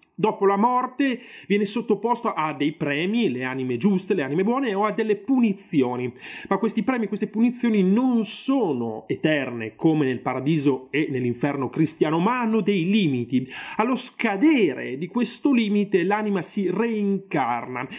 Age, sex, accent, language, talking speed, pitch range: 30-49, male, native, Italian, 145 wpm, 140-215 Hz